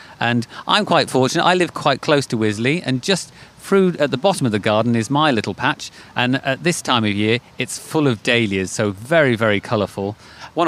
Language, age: English, 30-49